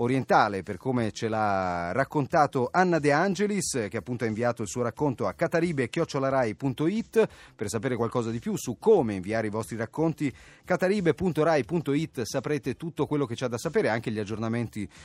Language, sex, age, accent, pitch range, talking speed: Italian, male, 30-49, native, 110-145 Hz, 160 wpm